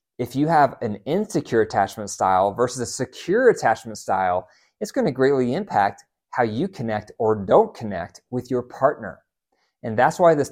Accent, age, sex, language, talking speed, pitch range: American, 30-49, male, English, 165 wpm, 115-145 Hz